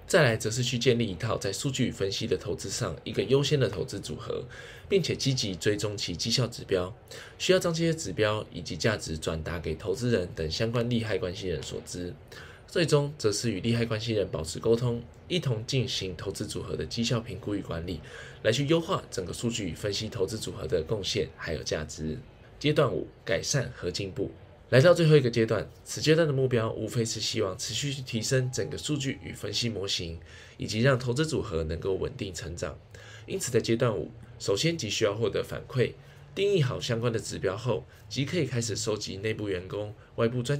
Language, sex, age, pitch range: Chinese, male, 10-29, 100-130 Hz